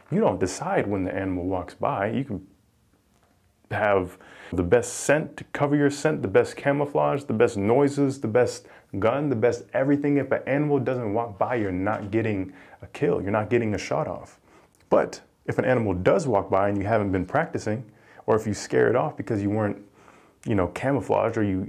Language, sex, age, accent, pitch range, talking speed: English, male, 30-49, American, 100-130 Hz, 200 wpm